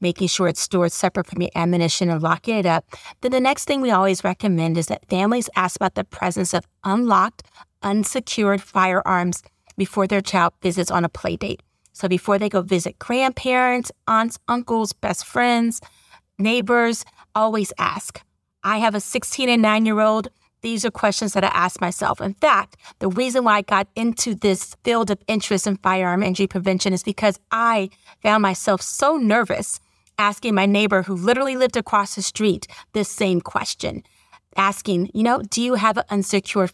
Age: 30-49